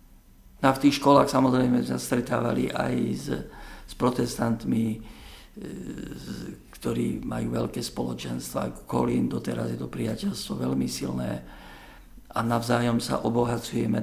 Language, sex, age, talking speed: Slovak, male, 50-69, 115 wpm